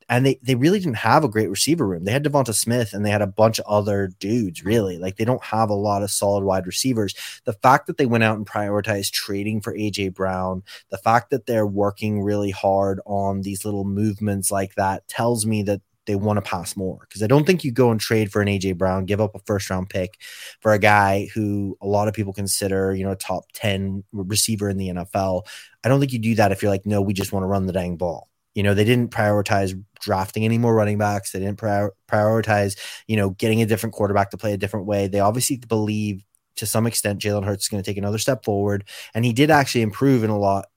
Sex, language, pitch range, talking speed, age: male, English, 100-115 Hz, 245 wpm, 20-39